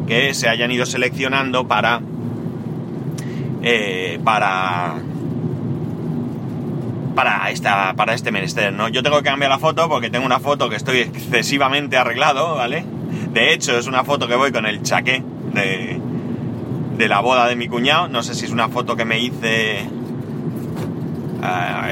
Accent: Spanish